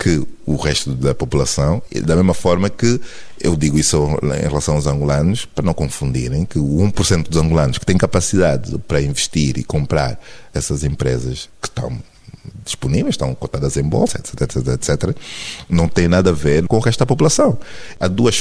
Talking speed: 185 wpm